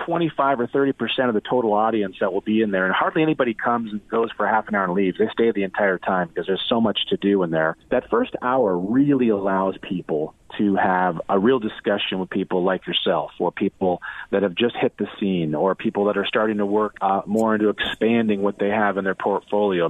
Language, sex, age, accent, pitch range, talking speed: English, male, 40-59, American, 95-115 Hz, 230 wpm